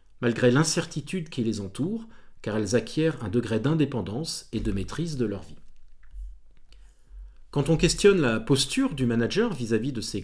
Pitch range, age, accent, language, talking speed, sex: 110-150 Hz, 40-59, French, French, 160 wpm, male